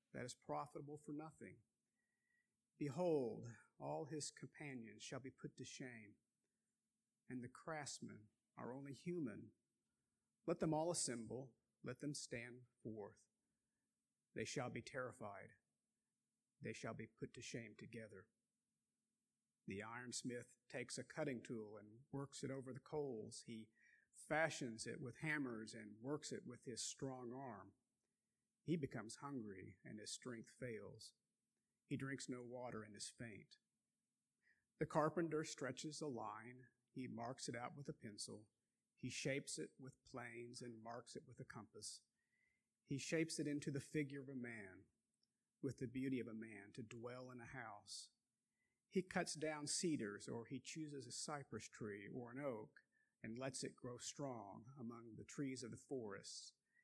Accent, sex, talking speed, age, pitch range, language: American, male, 150 wpm, 50-69, 115-150 Hz, English